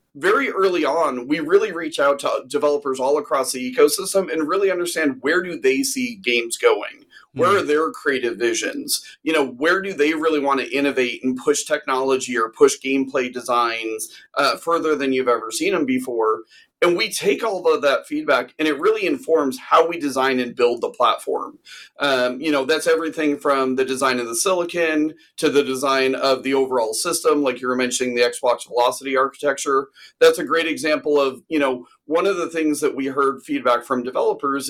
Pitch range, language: 130-175 Hz, English